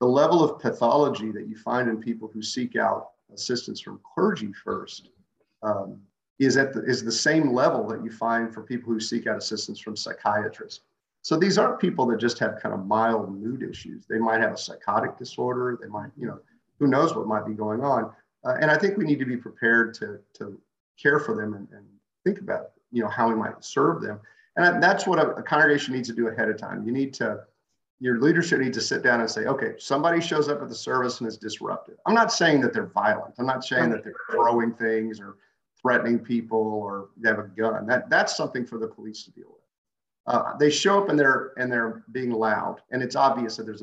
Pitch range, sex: 110-130 Hz, male